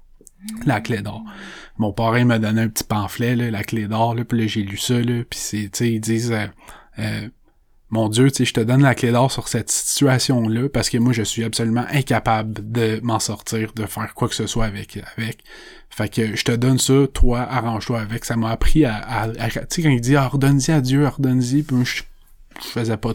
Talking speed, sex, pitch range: 230 wpm, male, 110-125 Hz